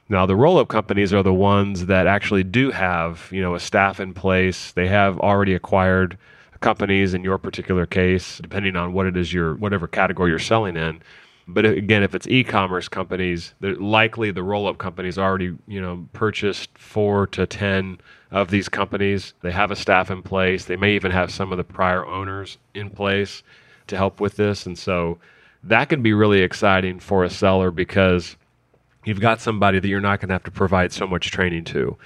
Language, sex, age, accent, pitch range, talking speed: English, male, 30-49, American, 90-100 Hz, 195 wpm